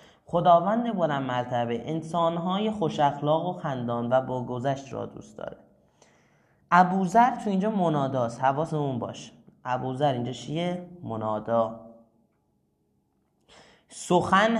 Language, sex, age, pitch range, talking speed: Persian, male, 30-49, 125-180 Hz, 110 wpm